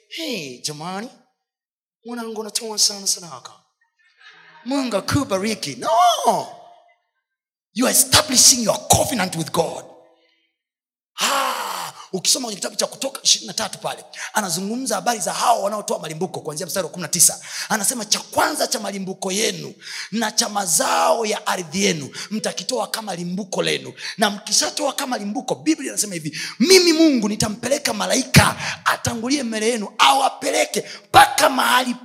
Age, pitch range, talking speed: 30-49, 175-275 Hz, 135 wpm